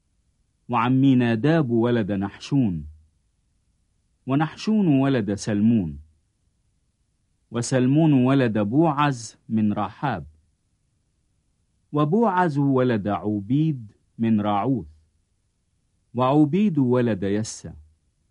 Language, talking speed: English, 65 wpm